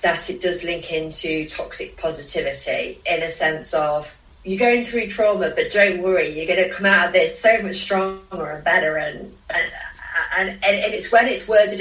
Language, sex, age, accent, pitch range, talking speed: English, female, 30-49, British, 165-200 Hz, 190 wpm